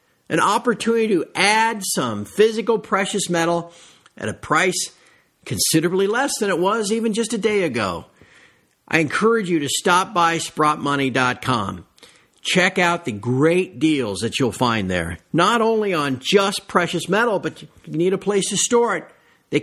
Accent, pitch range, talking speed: American, 145-205 Hz, 160 wpm